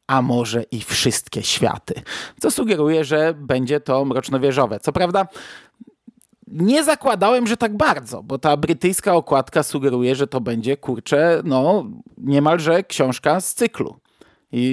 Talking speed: 135 wpm